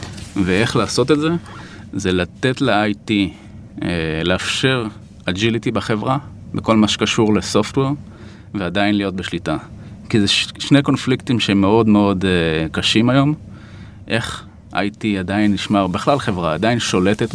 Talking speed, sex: 135 wpm, male